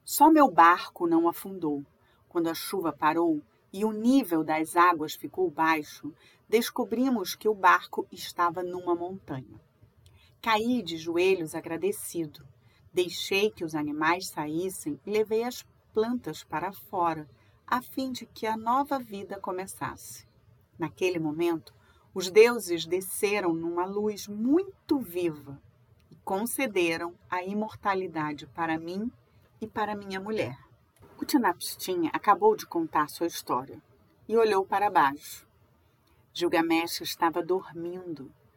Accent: Brazilian